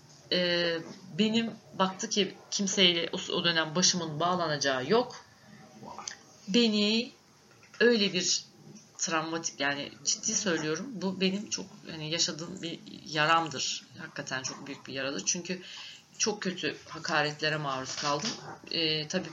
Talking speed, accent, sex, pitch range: 110 wpm, native, female, 160-205 Hz